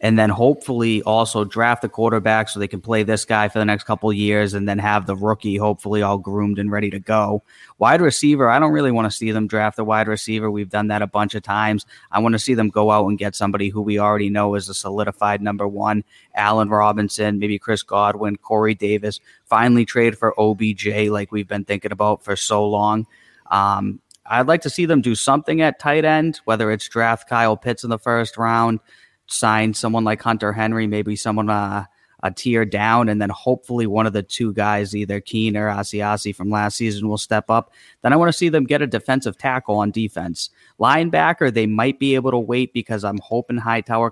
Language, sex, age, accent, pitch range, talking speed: English, male, 20-39, American, 105-115 Hz, 220 wpm